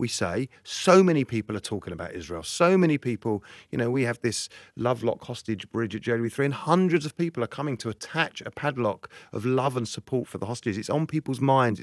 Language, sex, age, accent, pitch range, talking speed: English, male, 40-59, British, 100-140 Hz, 225 wpm